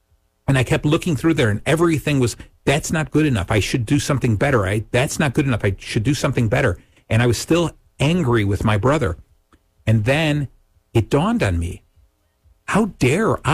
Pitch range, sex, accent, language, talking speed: 105-145 Hz, male, American, English, 195 wpm